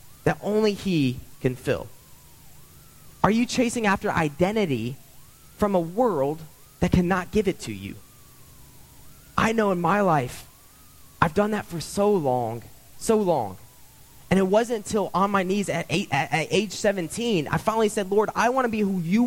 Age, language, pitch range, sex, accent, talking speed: 20-39, English, 160-220 Hz, male, American, 170 wpm